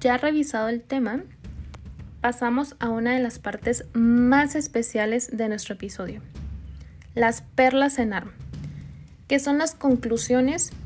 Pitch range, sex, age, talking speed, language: 215-270 Hz, female, 20-39, 125 wpm, Spanish